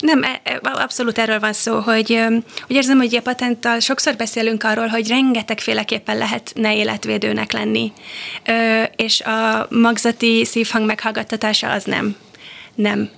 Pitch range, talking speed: 220-230 Hz, 130 wpm